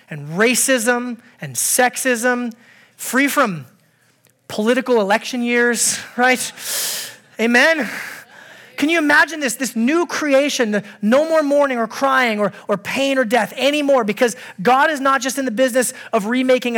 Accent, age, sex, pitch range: American, 30-49, male, 200-255 Hz